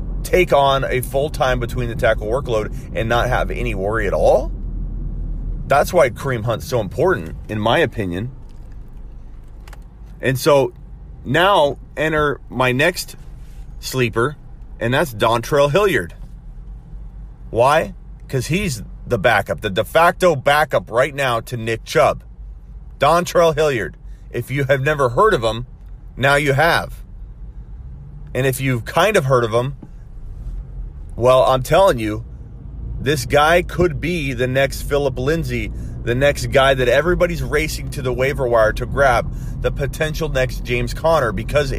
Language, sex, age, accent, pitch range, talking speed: English, male, 30-49, American, 120-150 Hz, 145 wpm